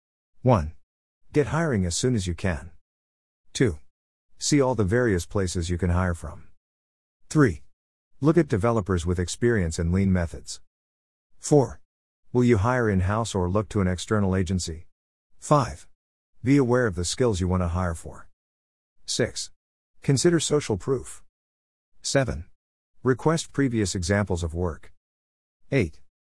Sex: male